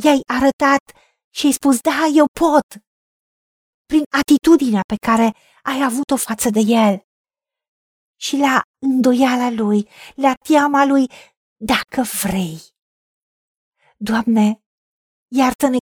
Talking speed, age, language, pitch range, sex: 105 wpm, 40-59, Romanian, 230-290 Hz, female